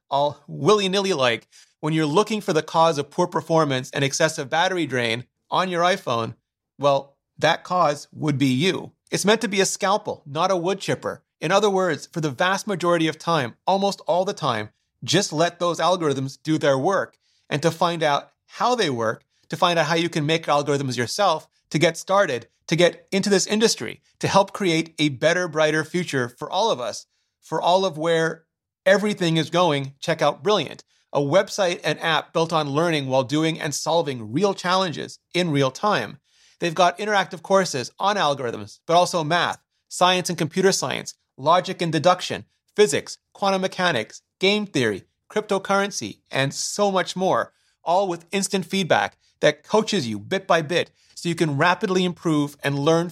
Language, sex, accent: English, male, American